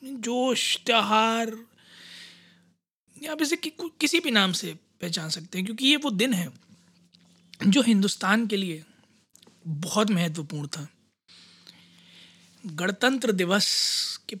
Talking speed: 115 wpm